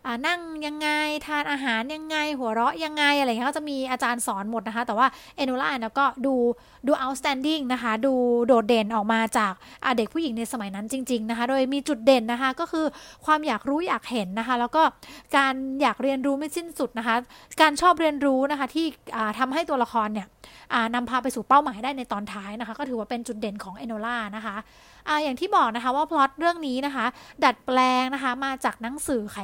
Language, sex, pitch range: English, female, 235-295 Hz